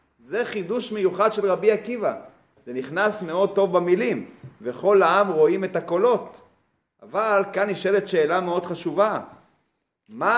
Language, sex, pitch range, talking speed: Hebrew, male, 180-240 Hz, 135 wpm